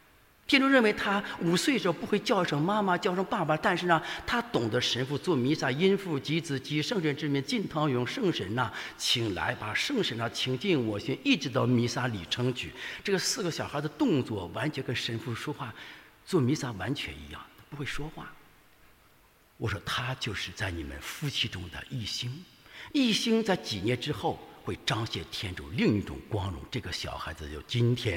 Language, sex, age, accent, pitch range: English, male, 60-79, Chinese, 105-155 Hz